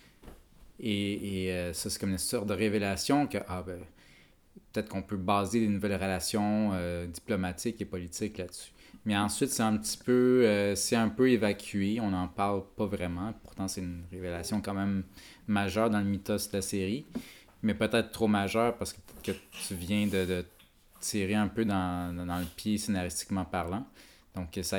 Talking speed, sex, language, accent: 185 wpm, male, French, Canadian